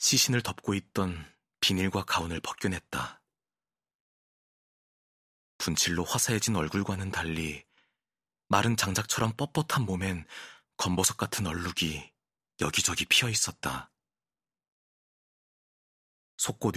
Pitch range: 85-120 Hz